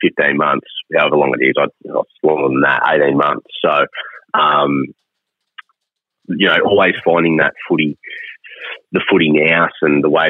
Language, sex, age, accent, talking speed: English, male, 30-49, Australian, 150 wpm